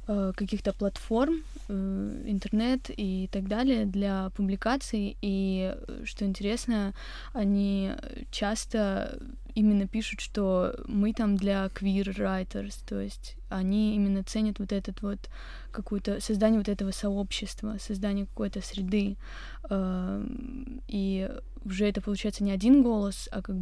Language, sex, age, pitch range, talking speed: Russian, female, 20-39, 195-220 Hz, 115 wpm